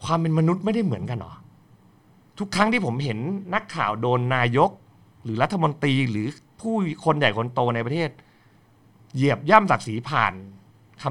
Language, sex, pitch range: Thai, male, 110-155 Hz